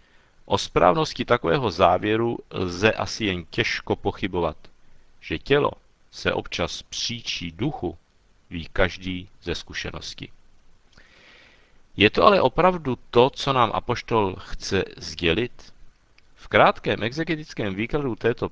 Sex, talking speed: male, 110 wpm